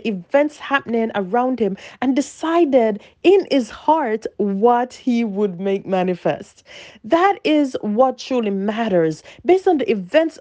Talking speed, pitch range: 135 wpm, 245-325 Hz